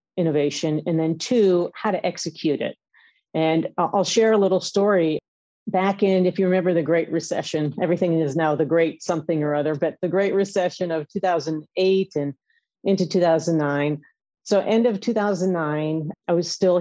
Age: 40-59